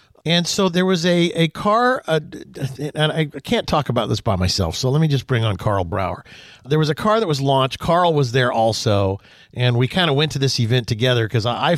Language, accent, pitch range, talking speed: English, American, 120-165 Hz, 240 wpm